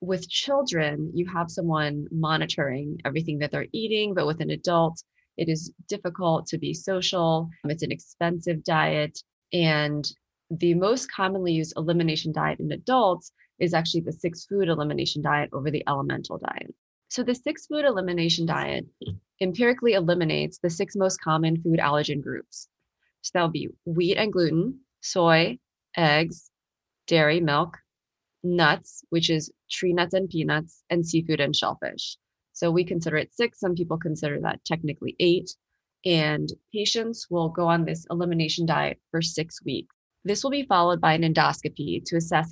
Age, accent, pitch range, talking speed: 20-39, American, 155-180 Hz, 155 wpm